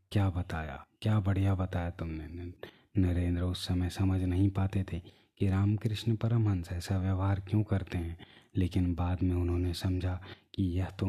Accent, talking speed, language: native, 155 wpm, Hindi